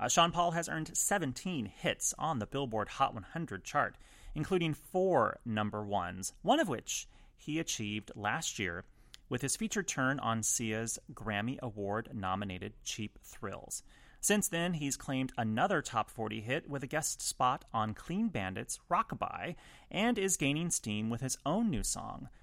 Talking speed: 160 wpm